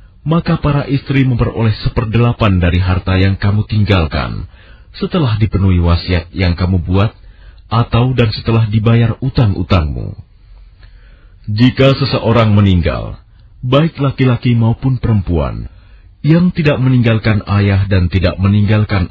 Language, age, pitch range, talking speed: Arabic, 30-49, 90-120 Hz, 110 wpm